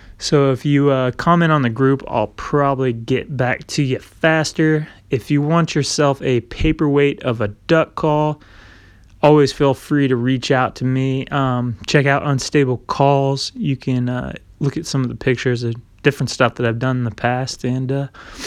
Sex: male